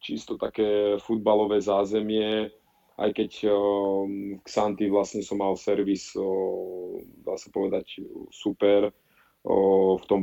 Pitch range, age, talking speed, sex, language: 95-105 Hz, 20-39, 110 wpm, male, Czech